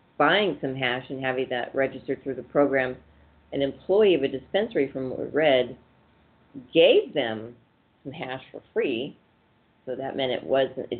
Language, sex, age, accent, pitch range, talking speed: English, female, 40-59, American, 125-145 Hz, 155 wpm